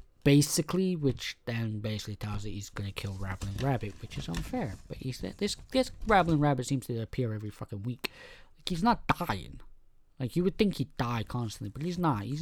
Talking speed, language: 205 wpm, English